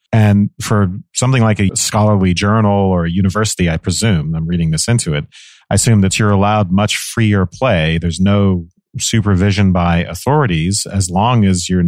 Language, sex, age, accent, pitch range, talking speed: English, male, 40-59, American, 85-105 Hz, 170 wpm